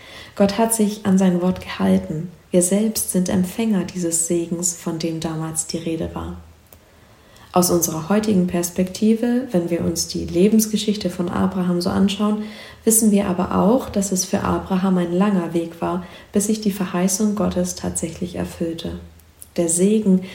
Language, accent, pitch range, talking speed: German, German, 165-205 Hz, 155 wpm